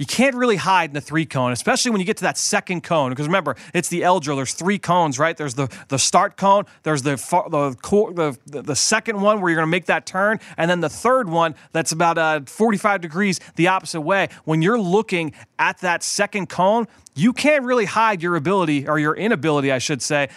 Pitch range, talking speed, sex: 155-190 Hz, 220 wpm, male